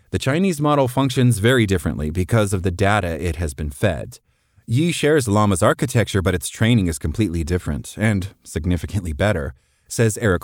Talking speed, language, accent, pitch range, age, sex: 165 wpm, English, American, 90-120 Hz, 30-49, male